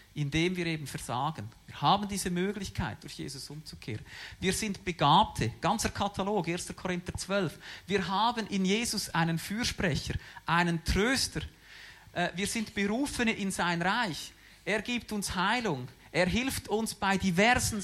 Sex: male